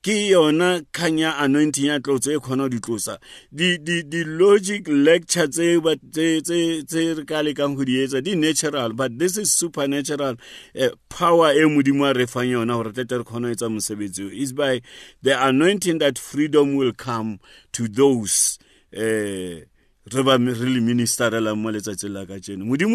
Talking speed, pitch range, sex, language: 80 wpm, 135-175 Hz, male, English